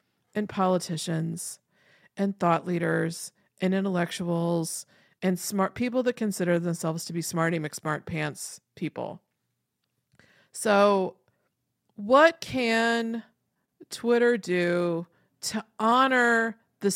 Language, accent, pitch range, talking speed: English, American, 170-230 Hz, 95 wpm